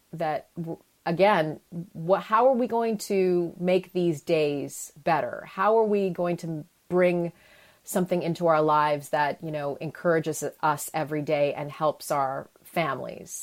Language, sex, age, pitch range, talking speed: English, female, 30-49, 150-185 Hz, 145 wpm